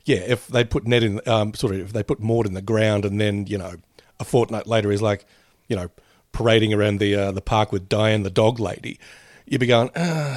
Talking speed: 245 wpm